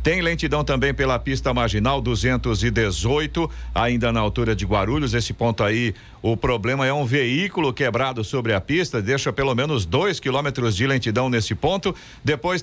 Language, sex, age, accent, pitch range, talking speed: Portuguese, male, 50-69, Brazilian, 120-155 Hz, 160 wpm